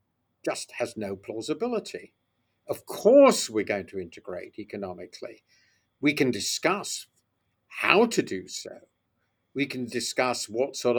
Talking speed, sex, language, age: 125 wpm, male, English, 50-69